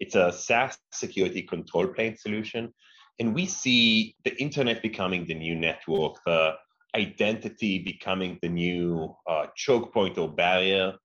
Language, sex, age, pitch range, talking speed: English, male, 30-49, 90-110 Hz, 140 wpm